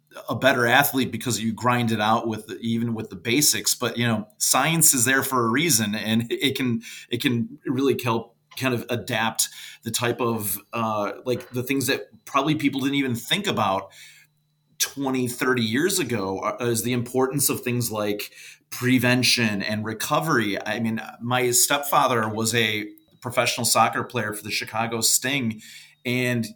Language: English